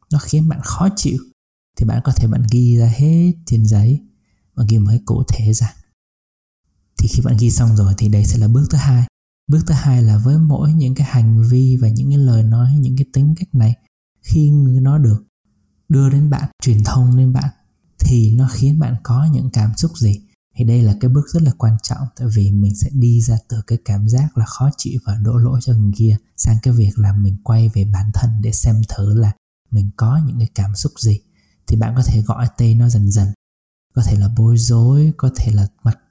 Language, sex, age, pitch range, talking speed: Vietnamese, male, 20-39, 110-130 Hz, 230 wpm